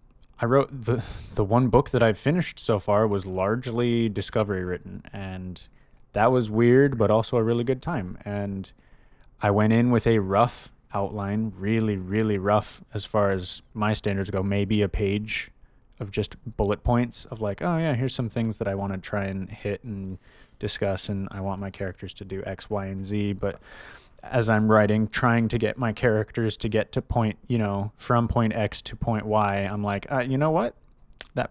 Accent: American